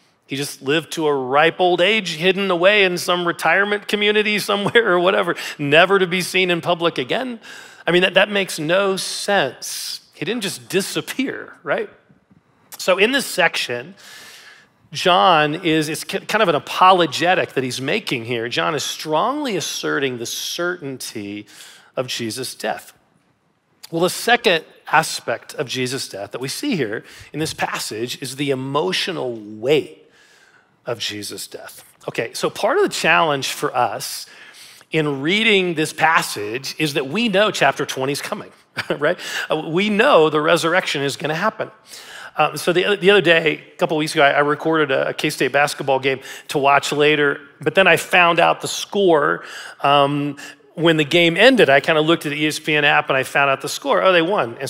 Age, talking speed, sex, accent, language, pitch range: 40-59, 175 wpm, male, American, English, 145-190 Hz